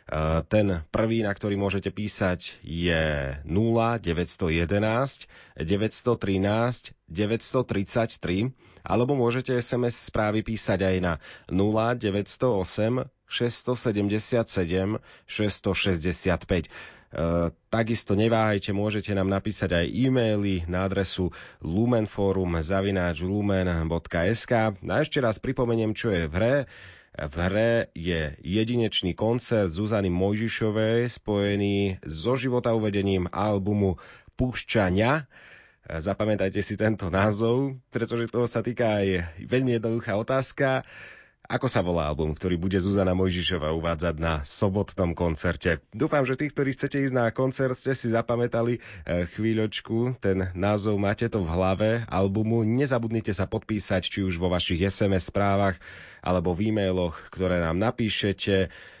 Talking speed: 115 wpm